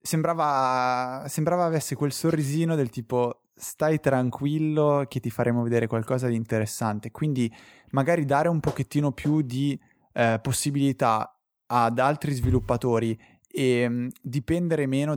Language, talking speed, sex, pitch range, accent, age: Italian, 125 wpm, male, 120-145 Hz, native, 20-39